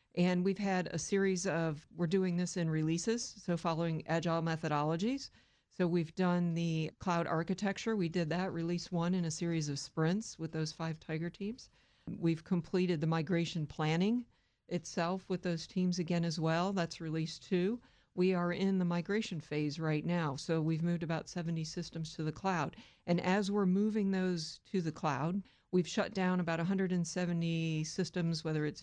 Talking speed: 175 wpm